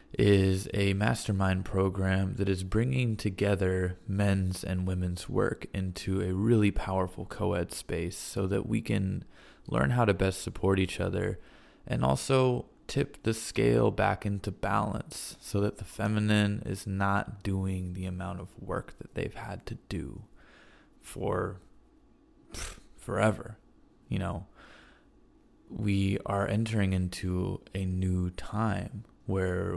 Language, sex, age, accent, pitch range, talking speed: English, male, 20-39, American, 90-105 Hz, 130 wpm